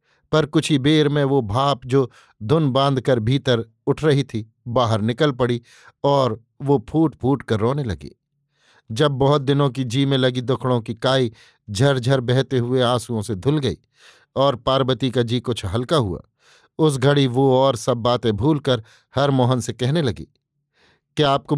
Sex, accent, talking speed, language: male, native, 180 wpm, Hindi